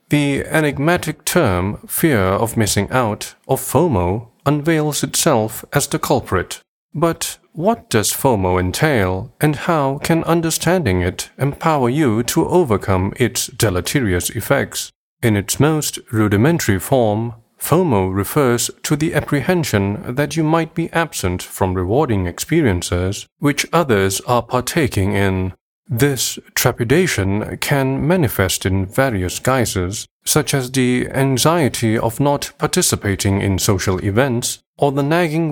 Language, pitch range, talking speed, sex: English, 100-150 Hz, 125 wpm, male